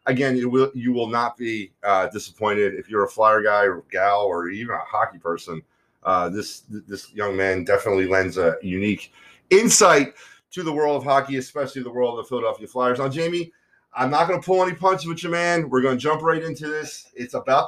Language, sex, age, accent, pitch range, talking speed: English, male, 30-49, American, 115-150 Hz, 210 wpm